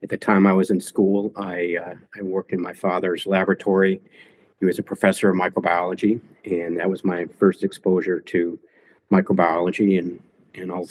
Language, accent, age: English, American, 50-69